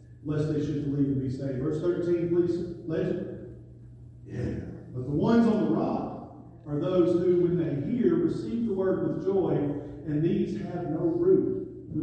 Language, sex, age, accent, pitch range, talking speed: English, male, 40-59, American, 120-170 Hz, 175 wpm